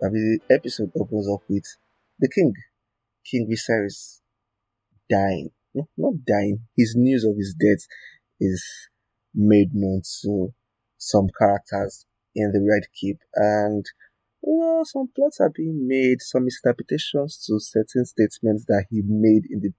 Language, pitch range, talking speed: English, 100-120 Hz, 135 wpm